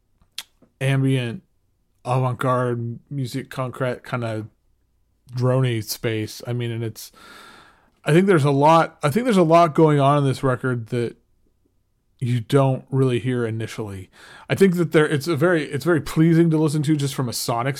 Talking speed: 170 wpm